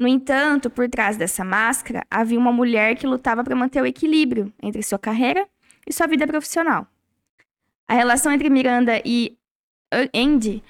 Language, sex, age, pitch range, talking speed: Portuguese, female, 10-29, 230-275 Hz, 155 wpm